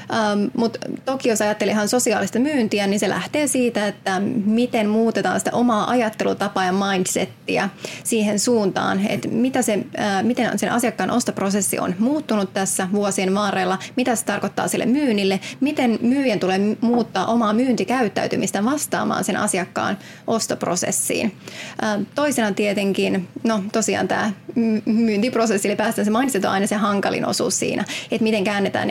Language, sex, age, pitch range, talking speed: Finnish, female, 20-39, 200-235 Hz, 140 wpm